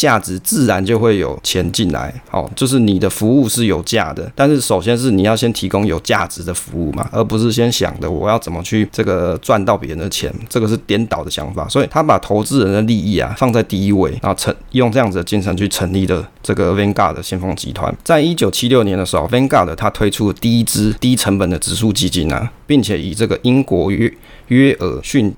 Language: Chinese